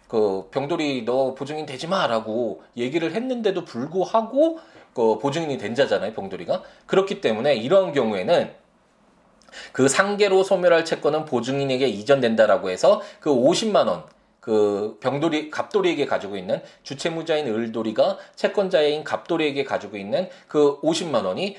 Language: Korean